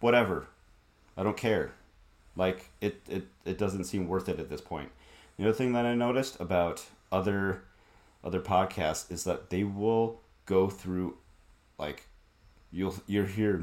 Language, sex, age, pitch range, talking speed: English, male, 30-49, 75-95 Hz, 155 wpm